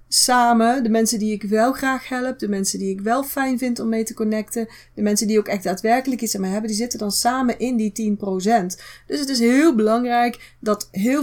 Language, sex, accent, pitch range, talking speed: Dutch, female, Dutch, 200-250 Hz, 230 wpm